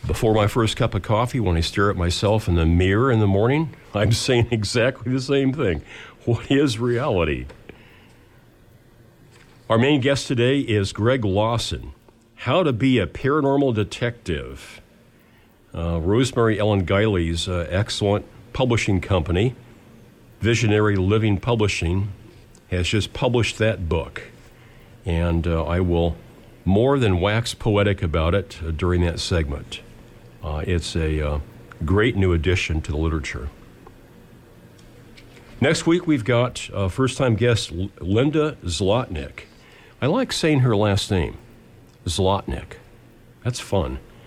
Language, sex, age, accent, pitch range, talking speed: English, male, 50-69, American, 90-120 Hz, 130 wpm